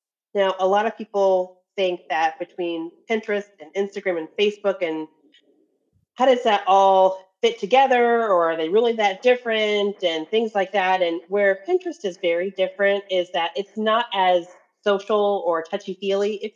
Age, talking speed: 30-49, 165 wpm